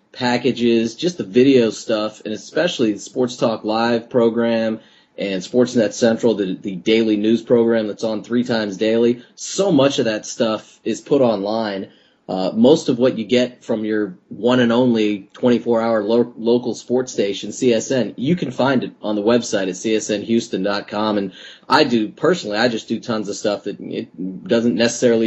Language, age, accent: English, 30-49, American